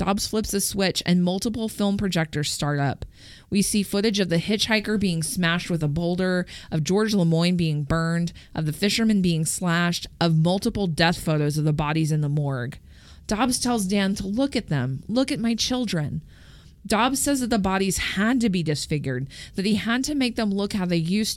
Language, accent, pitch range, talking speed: English, American, 155-205 Hz, 200 wpm